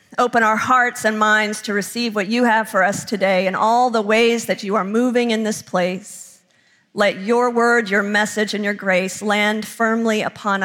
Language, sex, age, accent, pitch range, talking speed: English, female, 50-69, American, 200-245 Hz, 195 wpm